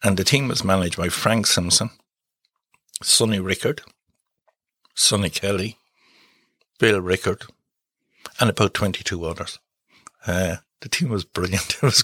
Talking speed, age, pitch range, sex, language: 125 wpm, 60-79, 90-115 Hz, male, English